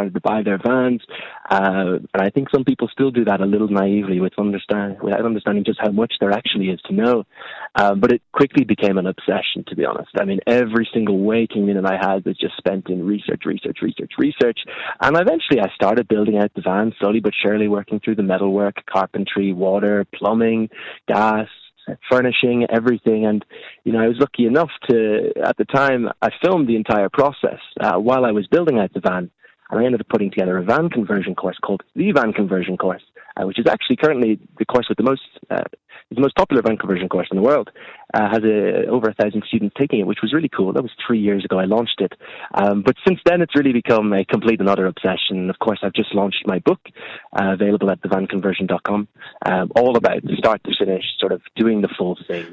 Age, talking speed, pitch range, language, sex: 20-39, 220 wpm, 100-115 Hz, English, male